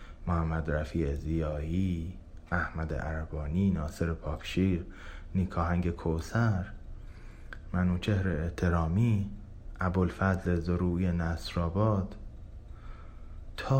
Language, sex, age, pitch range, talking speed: Persian, male, 30-49, 80-95 Hz, 75 wpm